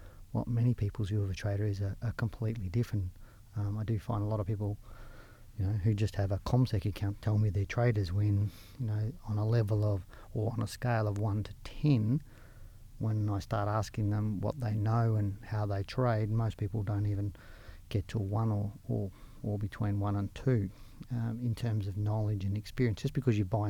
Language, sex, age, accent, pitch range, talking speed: English, male, 40-59, Australian, 105-125 Hz, 210 wpm